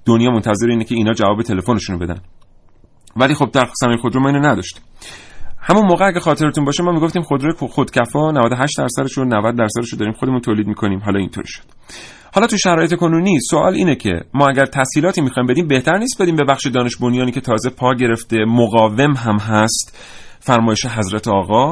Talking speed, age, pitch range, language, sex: 195 wpm, 30-49, 115-175 Hz, Persian, male